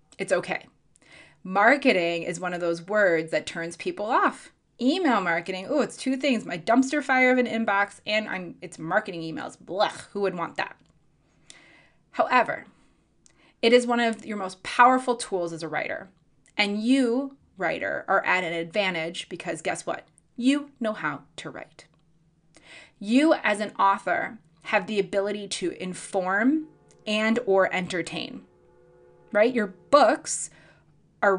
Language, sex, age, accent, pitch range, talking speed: English, female, 20-39, American, 165-230 Hz, 145 wpm